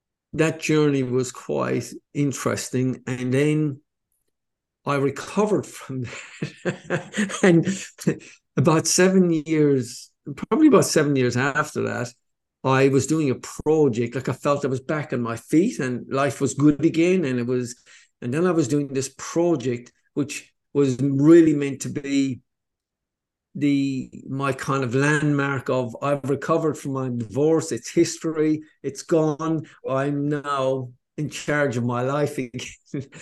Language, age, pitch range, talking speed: English, 50-69, 125-150 Hz, 145 wpm